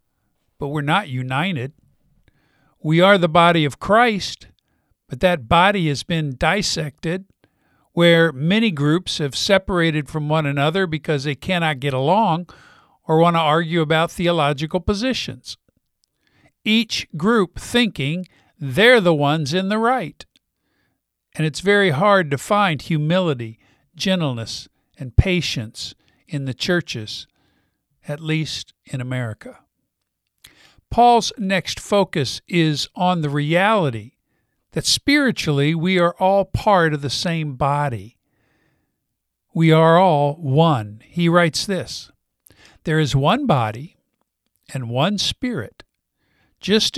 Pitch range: 145-190 Hz